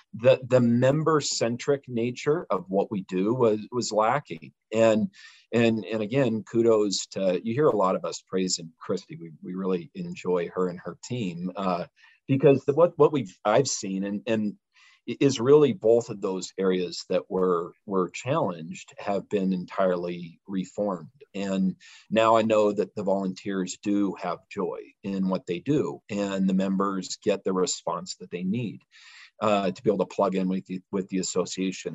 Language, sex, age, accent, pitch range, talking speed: English, male, 40-59, American, 95-115 Hz, 175 wpm